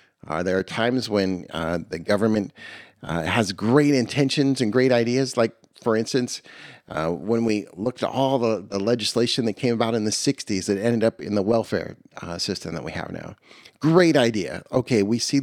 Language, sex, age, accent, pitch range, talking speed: English, male, 40-59, American, 105-130 Hz, 195 wpm